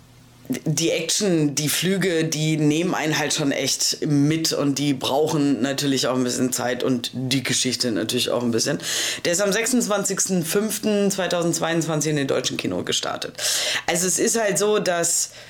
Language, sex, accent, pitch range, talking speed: German, female, German, 130-170 Hz, 160 wpm